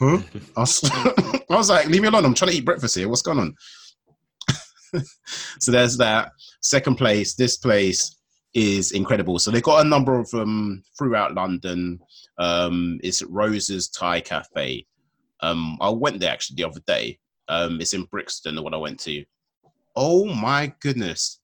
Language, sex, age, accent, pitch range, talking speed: English, male, 30-49, British, 100-140 Hz, 175 wpm